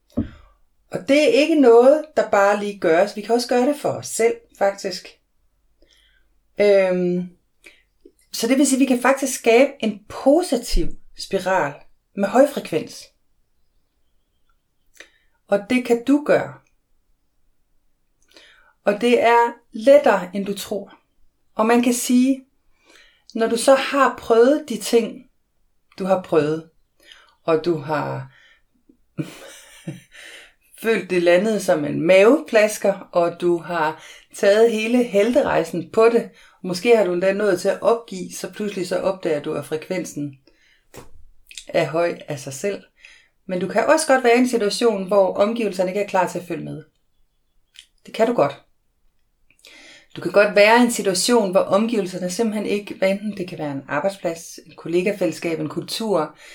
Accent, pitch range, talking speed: native, 180-235 Hz, 150 wpm